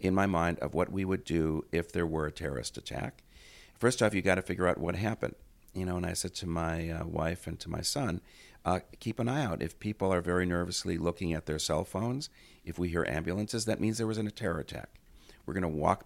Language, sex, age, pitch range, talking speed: English, male, 60-79, 85-110 Hz, 245 wpm